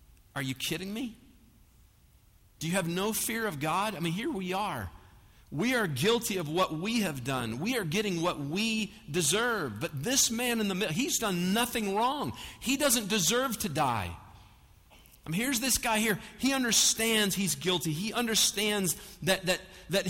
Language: English